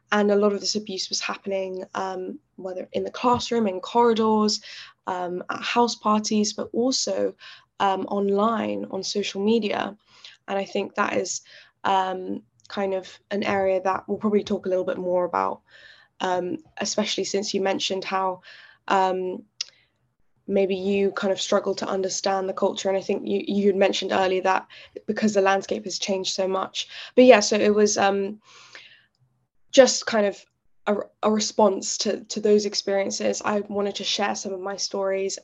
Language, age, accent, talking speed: English, 10-29, British, 170 wpm